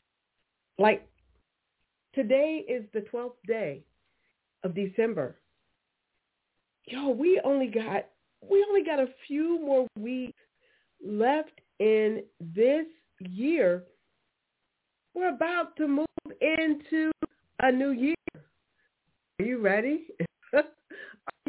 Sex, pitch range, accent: female, 190-285 Hz, American